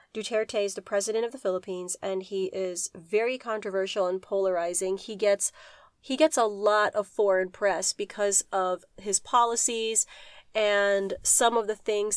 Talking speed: 155 wpm